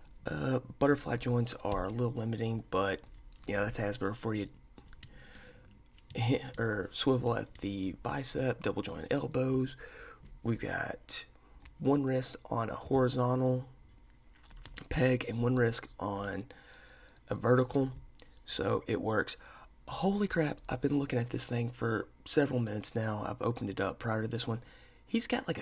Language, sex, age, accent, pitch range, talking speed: English, male, 30-49, American, 105-130 Hz, 145 wpm